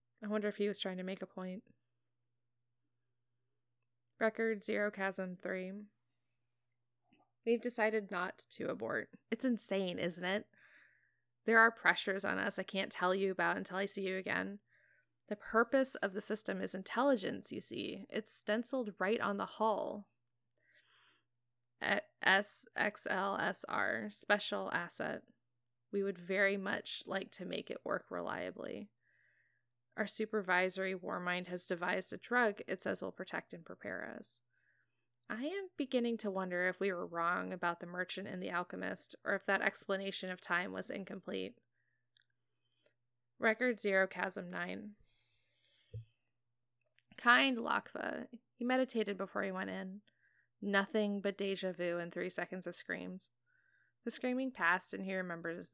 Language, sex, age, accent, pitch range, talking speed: English, female, 20-39, American, 125-210 Hz, 140 wpm